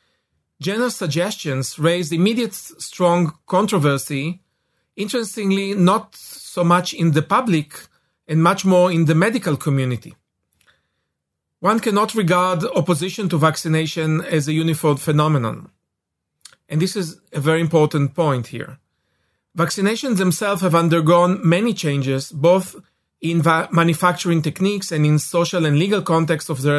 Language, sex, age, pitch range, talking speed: English, male, 40-59, 150-185 Hz, 130 wpm